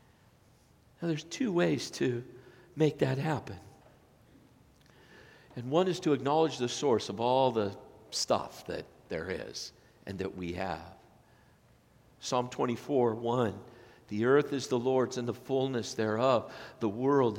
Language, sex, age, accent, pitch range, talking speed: English, male, 50-69, American, 120-165 Hz, 135 wpm